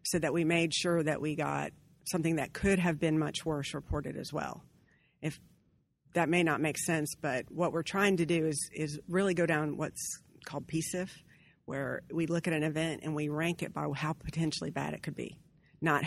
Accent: American